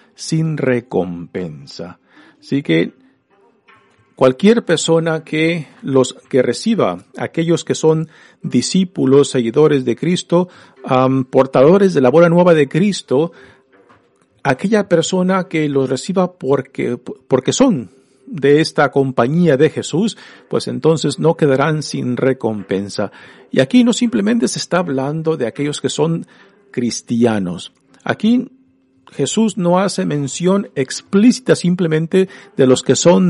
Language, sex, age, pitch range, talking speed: Spanish, male, 50-69, 130-180 Hz, 120 wpm